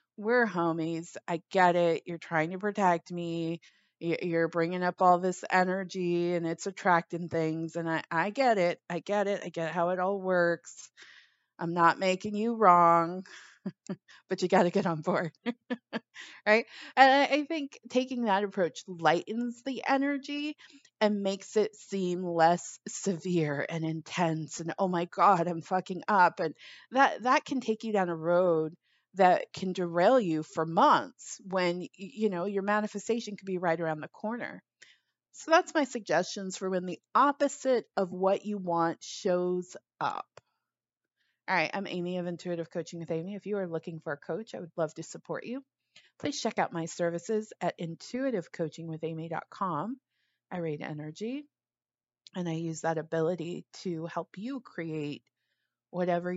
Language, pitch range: English, 165-210 Hz